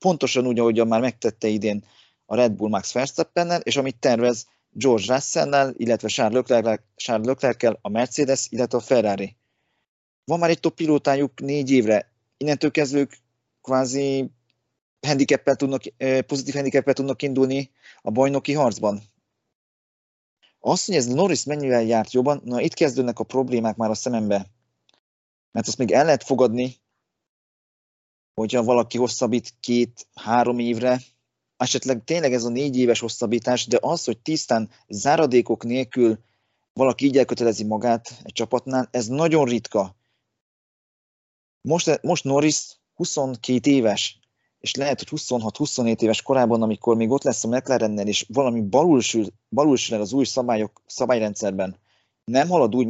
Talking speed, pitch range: 135 wpm, 115-135 Hz